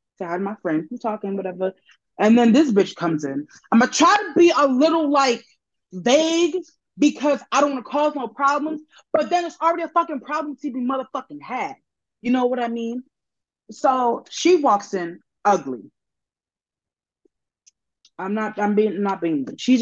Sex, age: female, 20-39